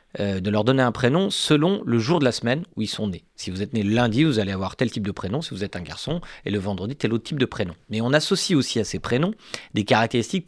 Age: 40-59